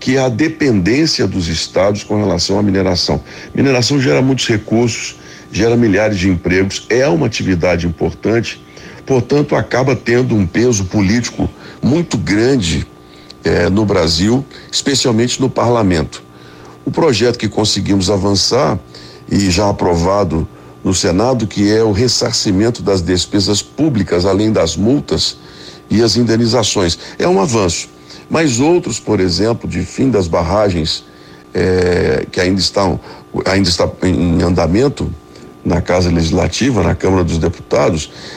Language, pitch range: Portuguese, 85-115 Hz